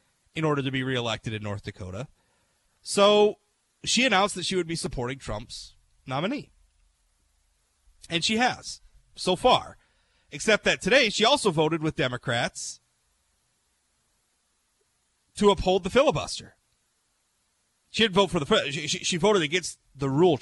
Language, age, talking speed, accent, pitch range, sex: English, 30-49, 140 wpm, American, 125-185 Hz, male